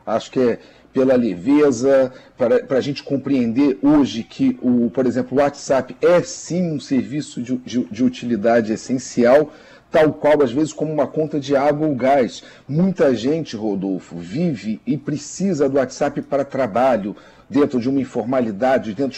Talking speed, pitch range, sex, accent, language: 160 wpm, 135-175 Hz, male, Brazilian, Portuguese